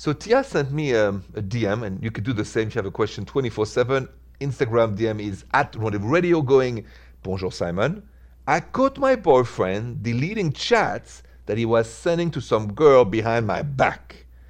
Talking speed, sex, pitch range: 180 wpm, male, 90-140 Hz